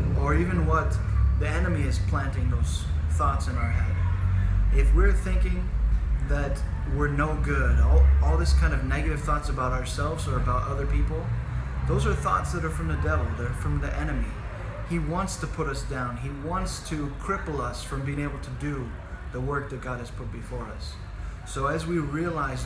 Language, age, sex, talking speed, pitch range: English, 20-39, male, 190 wpm, 80-130 Hz